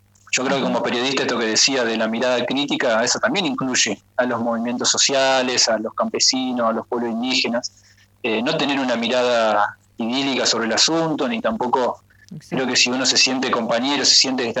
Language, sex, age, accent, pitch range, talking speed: Spanish, male, 20-39, Argentinian, 115-130 Hz, 195 wpm